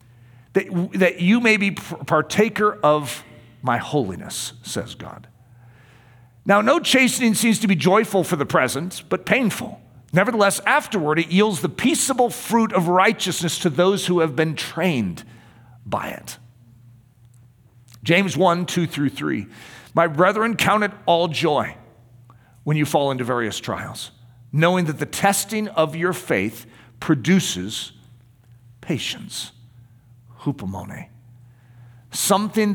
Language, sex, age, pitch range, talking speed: English, male, 50-69, 120-180 Hz, 125 wpm